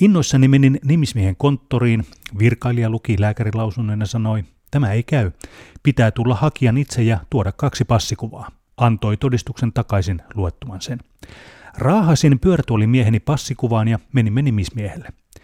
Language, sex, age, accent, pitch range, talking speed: Finnish, male, 30-49, native, 105-135 Hz, 120 wpm